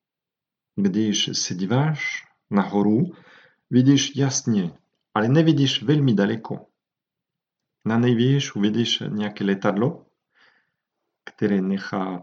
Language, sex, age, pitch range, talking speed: Czech, male, 50-69, 100-135 Hz, 85 wpm